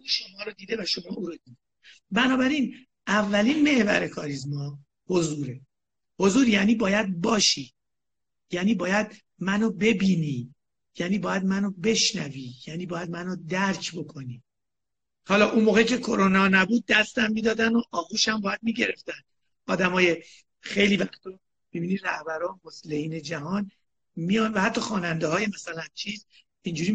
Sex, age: male, 50-69